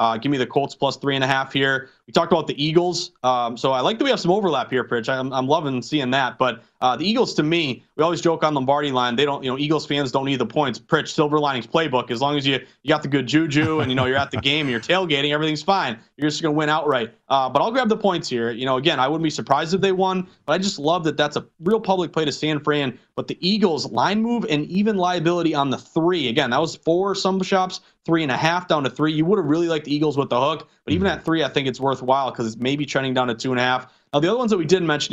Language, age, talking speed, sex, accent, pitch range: English, 30-49, 300 wpm, male, American, 135-175 Hz